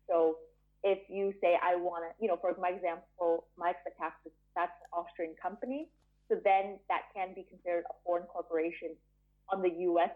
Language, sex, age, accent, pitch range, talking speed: English, female, 20-39, American, 170-200 Hz, 175 wpm